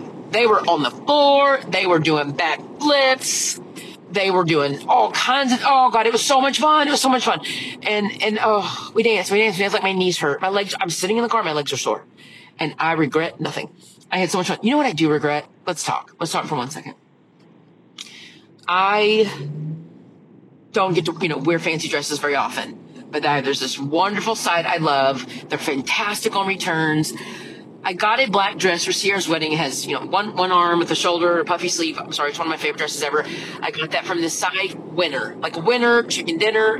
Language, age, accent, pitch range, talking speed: English, 30-49, American, 160-205 Hz, 220 wpm